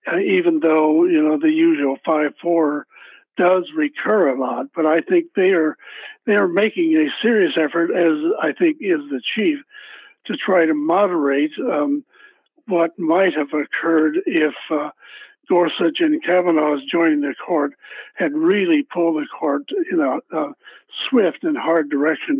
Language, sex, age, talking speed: English, male, 60-79, 160 wpm